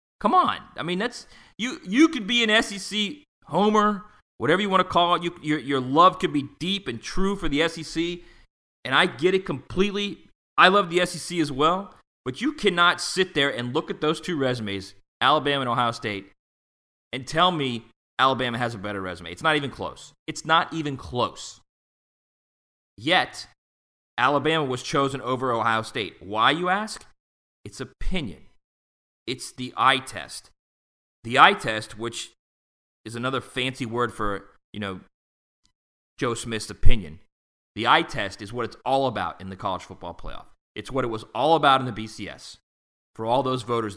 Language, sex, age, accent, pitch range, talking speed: English, male, 30-49, American, 100-165 Hz, 175 wpm